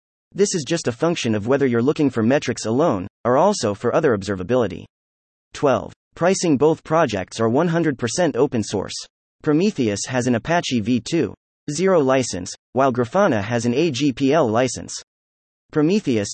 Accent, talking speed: American, 140 wpm